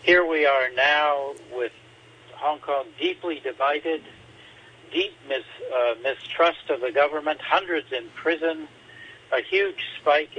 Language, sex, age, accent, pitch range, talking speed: English, male, 70-89, American, 130-190 Hz, 120 wpm